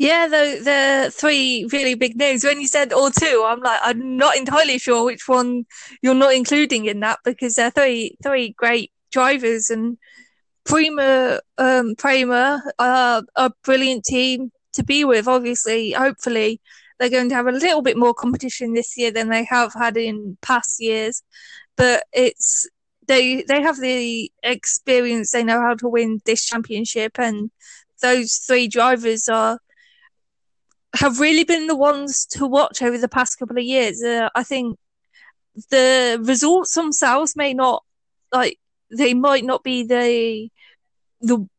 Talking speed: 155 wpm